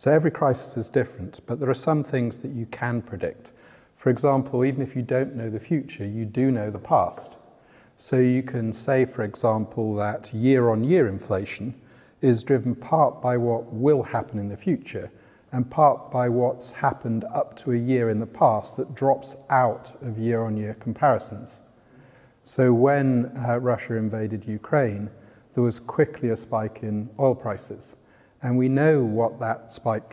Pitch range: 110-135 Hz